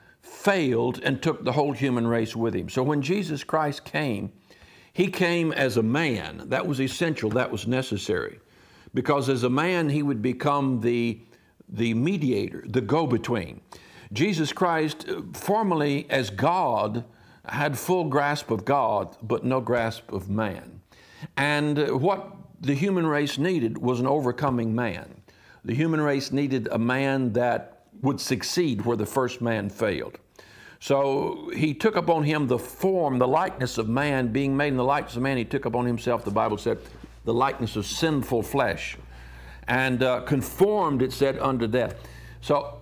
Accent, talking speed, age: American, 160 wpm, 60-79